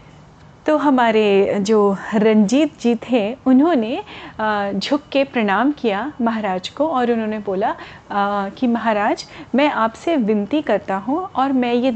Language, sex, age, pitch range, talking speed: Hindi, female, 30-49, 215-285 Hz, 130 wpm